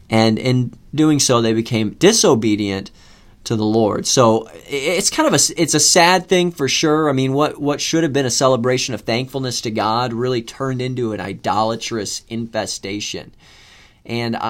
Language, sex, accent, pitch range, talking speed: English, male, American, 110-135 Hz, 170 wpm